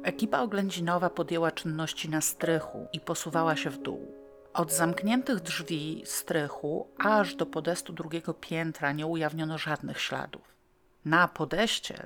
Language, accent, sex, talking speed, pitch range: Polish, native, female, 130 wpm, 150-170 Hz